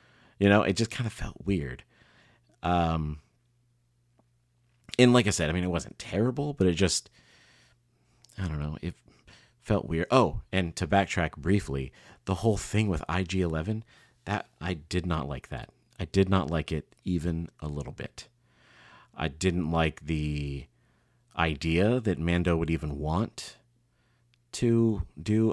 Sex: male